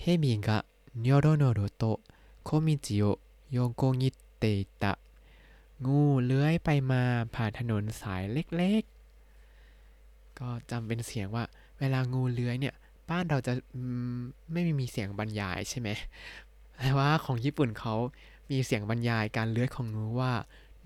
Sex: male